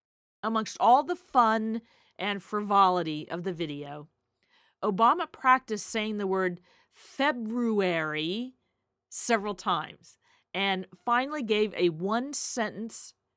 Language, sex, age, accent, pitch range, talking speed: English, female, 40-59, American, 180-235 Hz, 100 wpm